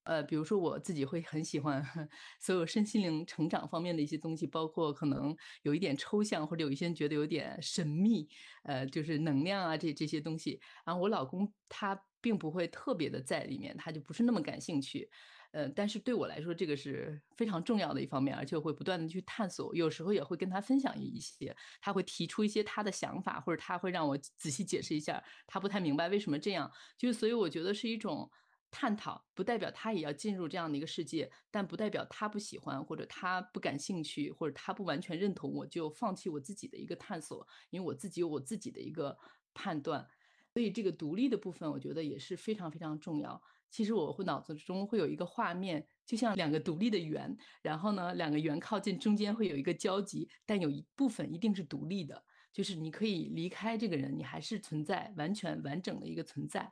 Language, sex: Chinese, female